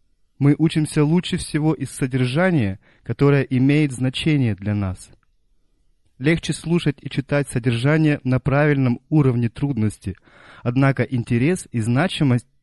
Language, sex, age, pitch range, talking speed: Russian, male, 30-49, 115-145 Hz, 115 wpm